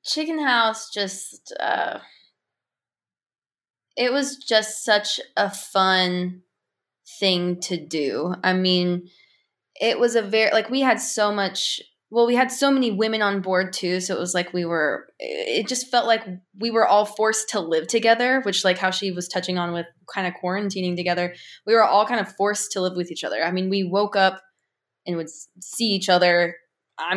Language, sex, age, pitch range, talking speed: English, female, 20-39, 180-220 Hz, 185 wpm